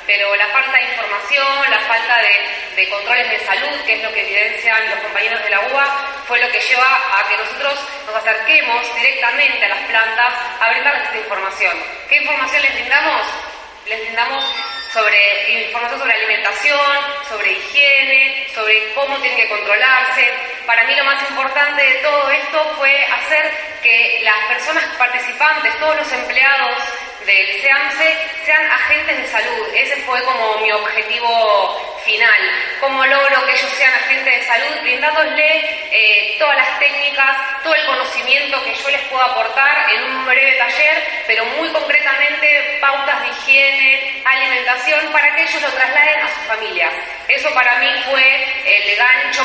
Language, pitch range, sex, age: Spanish, 225-285 Hz, female, 20-39